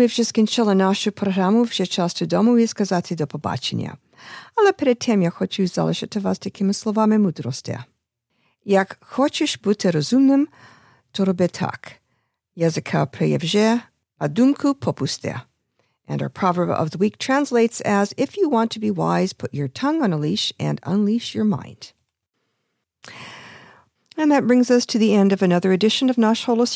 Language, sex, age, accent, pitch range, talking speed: English, female, 50-69, American, 175-240 Hz, 80 wpm